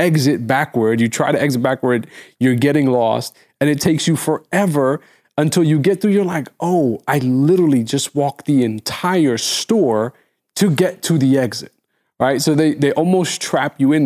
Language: English